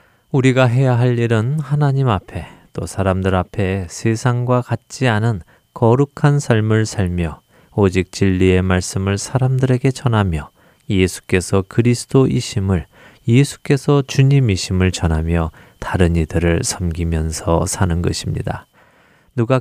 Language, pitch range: Korean, 90-130 Hz